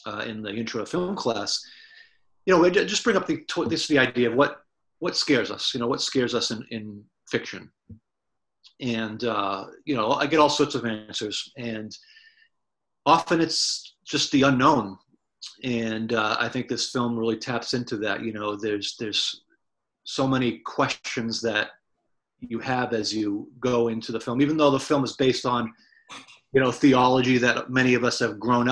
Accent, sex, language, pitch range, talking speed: American, male, English, 110-140 Hz, 185 wpm